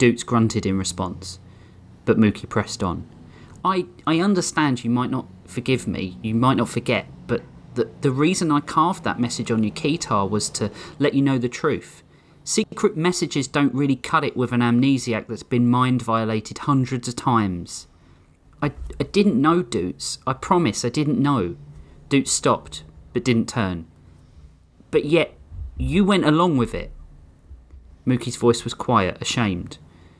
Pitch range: 90-150 Hz